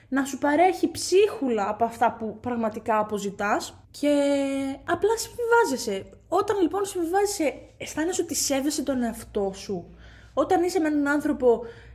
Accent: native